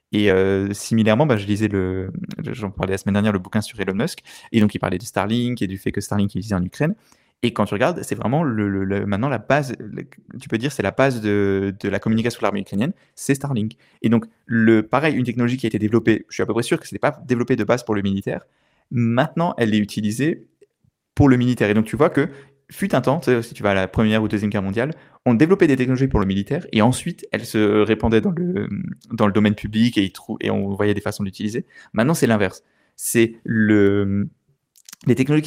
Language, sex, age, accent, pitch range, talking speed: French, male, 20-39, French, 105-135 Hz, 245 wpm